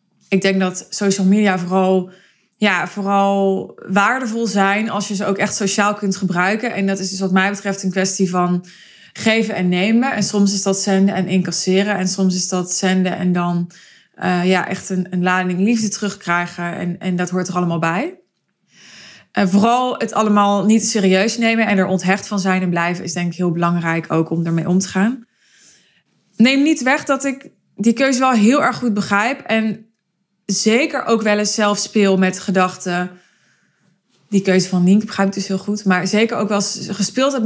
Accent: Dutch